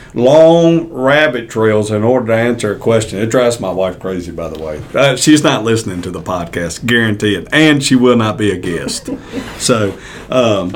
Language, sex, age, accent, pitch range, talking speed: English, male, 50-69, American, 110-140 Hz, 190 wpm